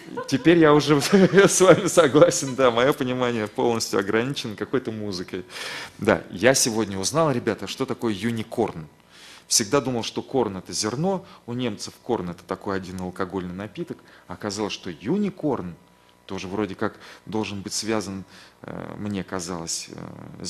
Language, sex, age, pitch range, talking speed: Russian, male, 30-49, 95-130 Hz, 135 wpm